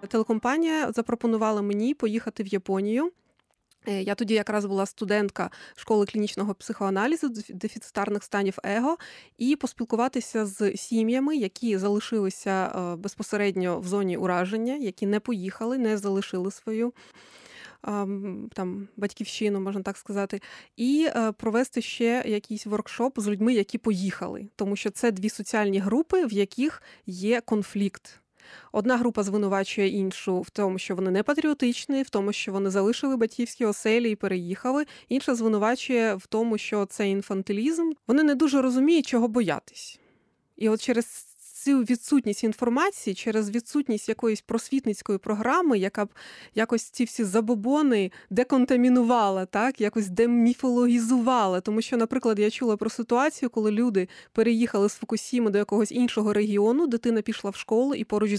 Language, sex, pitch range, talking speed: Ukrainian, female, 200-240 Hz, 135 wpm